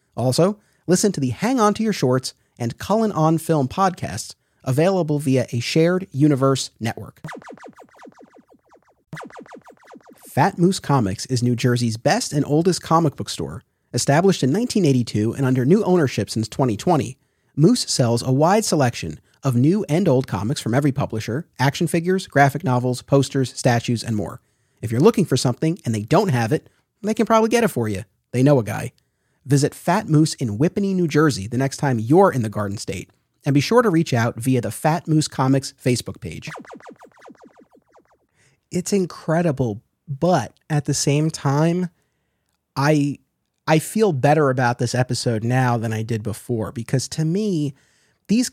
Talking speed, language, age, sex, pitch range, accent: 165 wpm, English, 30-49, male, 120-170 Hz, American